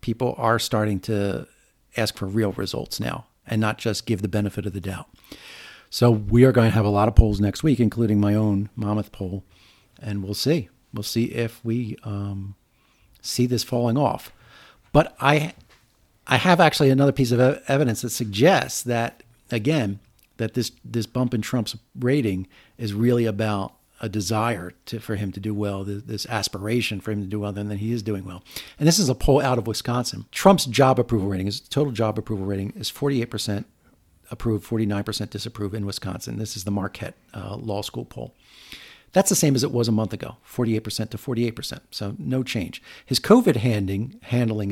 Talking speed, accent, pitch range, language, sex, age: 190 wpm, American, 105-125 Hz, English, male, 40-59